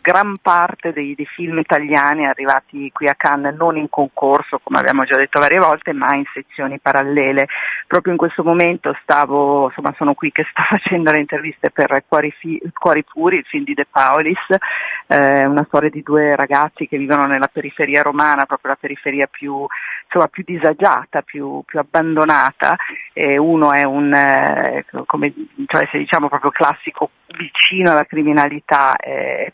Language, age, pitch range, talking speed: Italian, 40-59, 145-165 Hz, 165 wpm